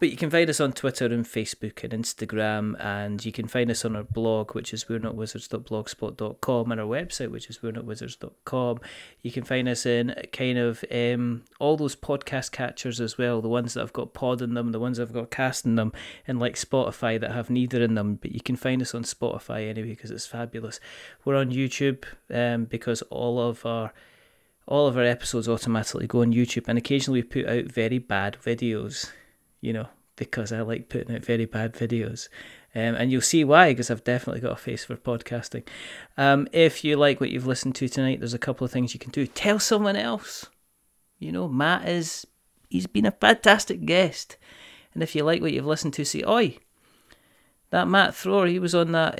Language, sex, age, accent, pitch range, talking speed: English, male, 30-49, British, 115-140 Hz, 215 wpm